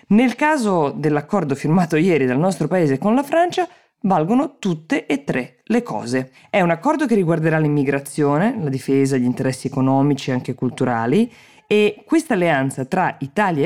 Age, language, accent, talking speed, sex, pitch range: 20-39, Italian, native, 160 wpm, female, 135-205 Hz